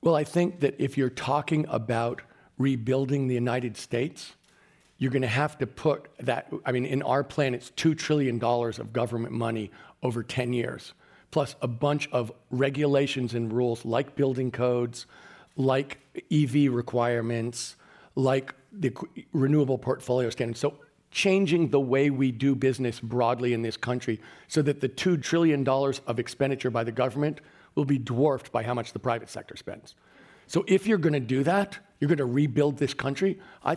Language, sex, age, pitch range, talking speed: English, male, 40-59, 120-150 Hz, 170 wpm